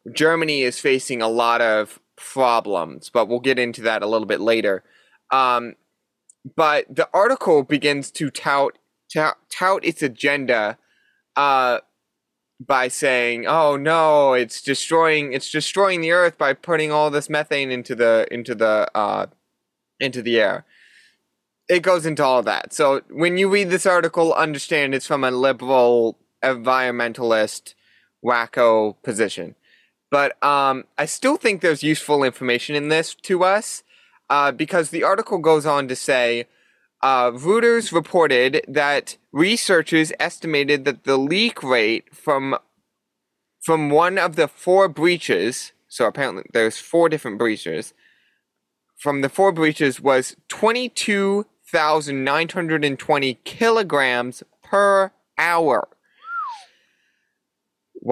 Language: English